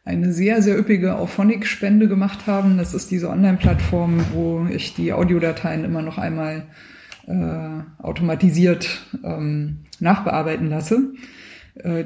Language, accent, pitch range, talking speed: German, German, 175-210 Hz, 120 wpm